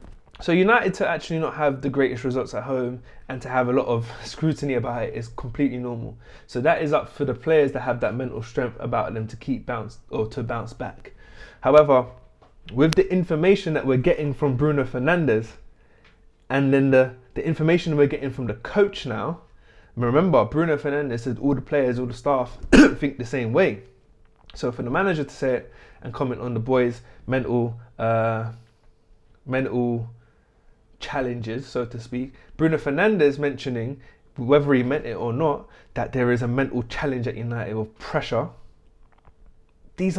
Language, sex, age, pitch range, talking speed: English, male, 20-39, 120-150 Hz, 175 wpm